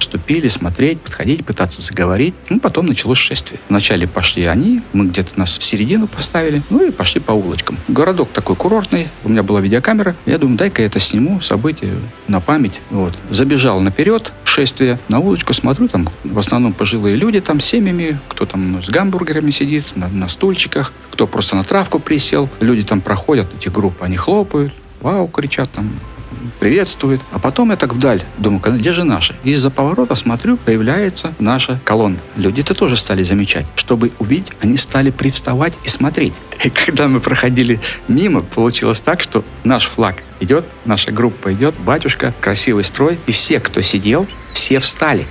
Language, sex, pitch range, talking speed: Russian, male, 100-145 Hz, 170 wpm